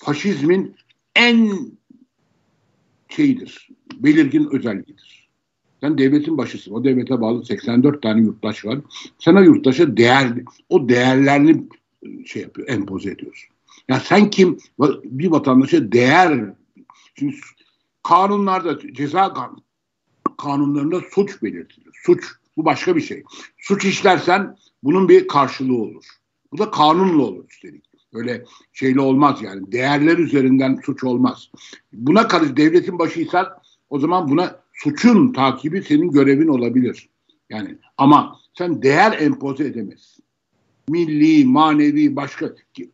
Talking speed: 115 wpm